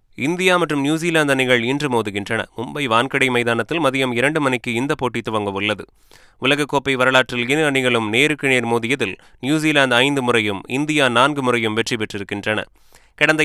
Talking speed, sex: 140 wpm, male